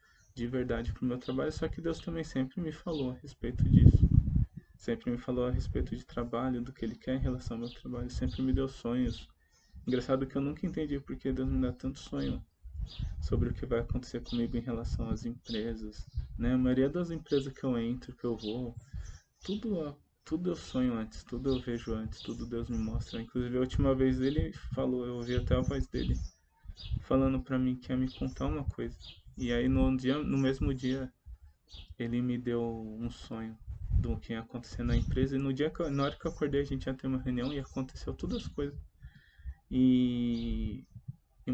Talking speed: 200 wpm